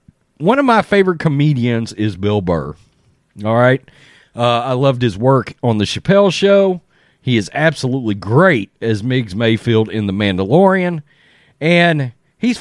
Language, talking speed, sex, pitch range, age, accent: English, 150 wpm, male, 125-185 Hz, 40-59, American